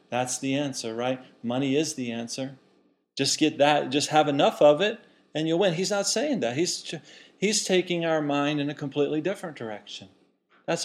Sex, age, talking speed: male, 40-59, 190 wpm